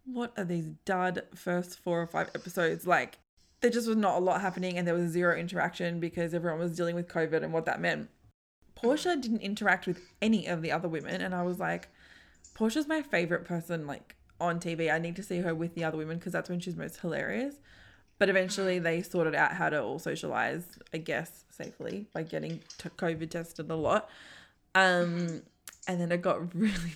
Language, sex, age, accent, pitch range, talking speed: English, female, 20-39, Australian, 165-190 Hz, 205 wpm